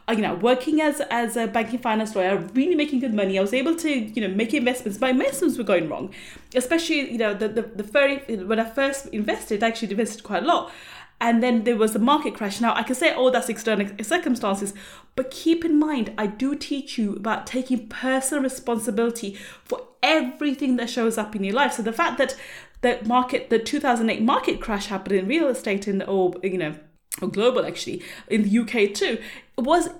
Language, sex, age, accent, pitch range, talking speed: English, female, 30-49, British, 220-285 Hz, 210 wpm